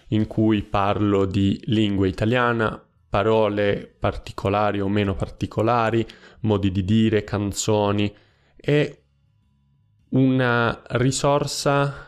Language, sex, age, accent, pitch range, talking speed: Italian, male, 20-39, native, 100-130 Hz, 90 wpm